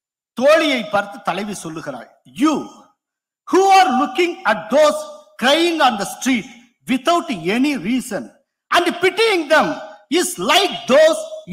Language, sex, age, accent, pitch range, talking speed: Tamil, male, 50-69, native, 190-290 Hz, 120 wpm